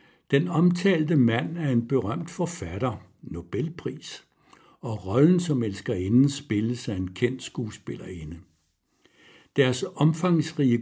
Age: 60-79